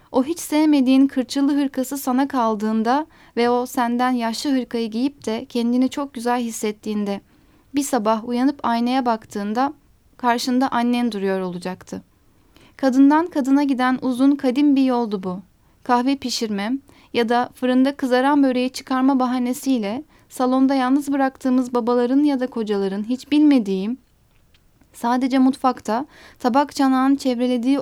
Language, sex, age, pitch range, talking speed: Turkish, female, 10-29, 235-270 Hz, 125 wpm